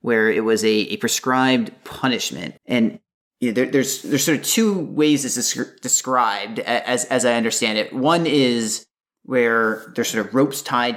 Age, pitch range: 30-49, 110-145 Hz